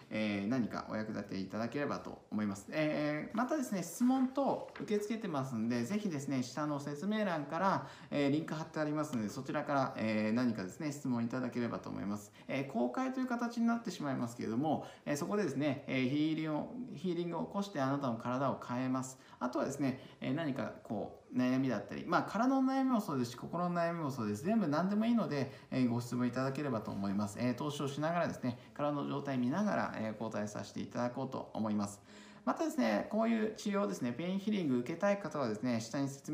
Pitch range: 110-165 Hz